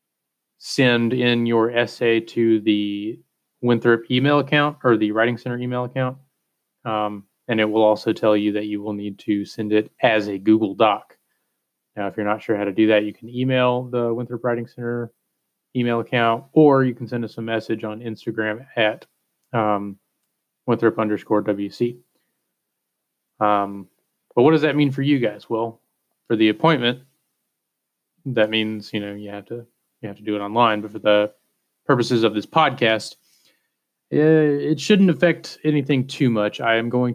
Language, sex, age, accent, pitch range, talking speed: English, male, 30-49, American, 105-125 Hz, 175 wpm